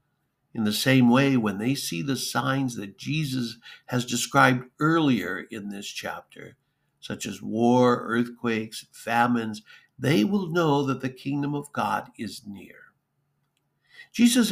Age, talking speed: 60-79, 135 wpm